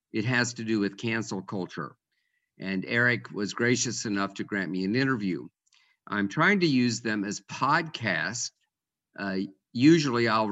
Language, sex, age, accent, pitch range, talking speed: English, male, 50-69, American, 100-140 Hz, 155 wpm